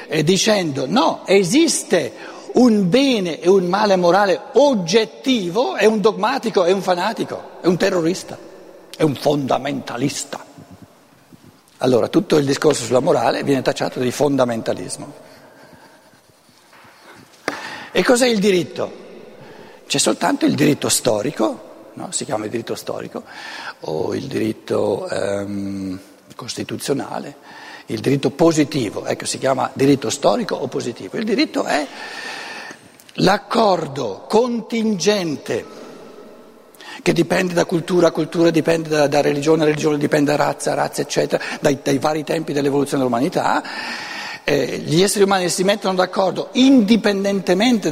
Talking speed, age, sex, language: 120 wpm, 60-79, male, Italian